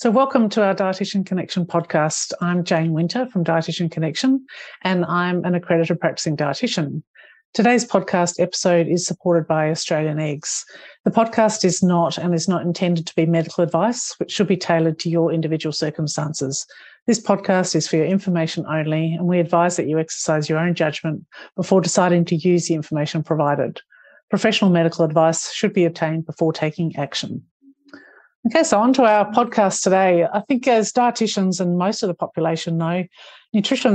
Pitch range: 165-210 Hz